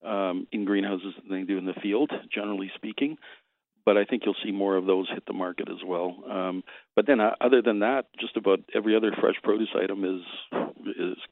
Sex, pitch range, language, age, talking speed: male, 95-105 Hz, English, 50-69, 210 wpm